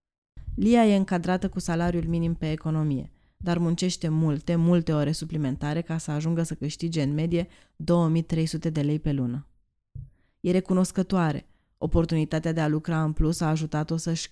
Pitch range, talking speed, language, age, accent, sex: 155-175 Hz, 155 wpm, Romanian, 20-39, native, female